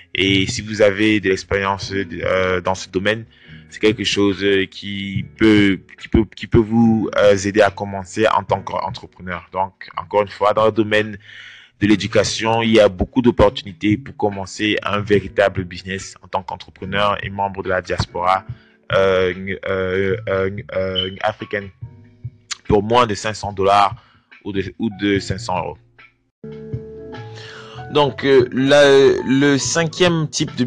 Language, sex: English, male